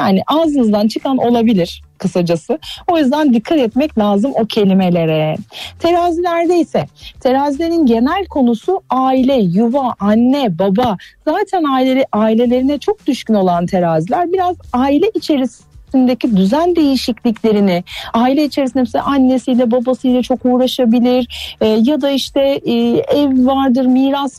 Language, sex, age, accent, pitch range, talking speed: Turkish, female, 40-59, native, 210-290 Hz, 120 wpm